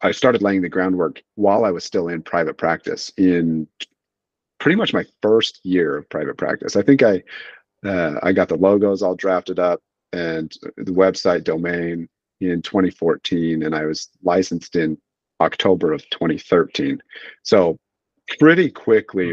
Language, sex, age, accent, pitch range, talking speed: English, male, 40-59, American, 85-110 Hz, 150 wpm